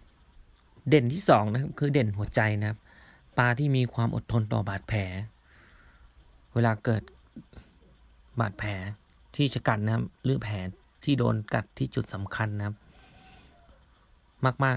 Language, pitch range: Thai, 95-125 Hz